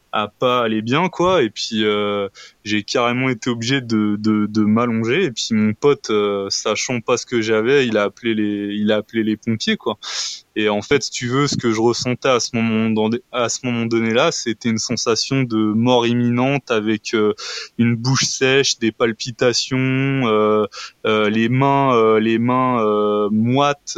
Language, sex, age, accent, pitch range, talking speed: French, male, 20-39, French, 110-130 Hz, 195 wpm